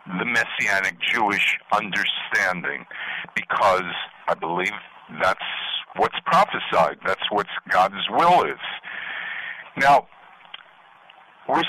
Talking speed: 85 wpm